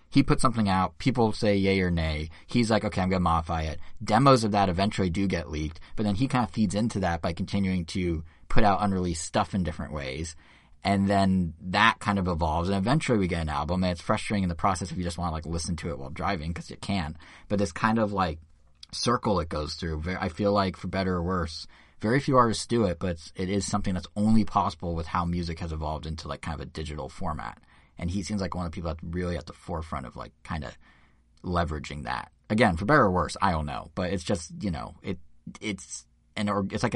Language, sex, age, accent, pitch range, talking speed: English, male, 30-49, American, 80-100 Hz, 245 wpm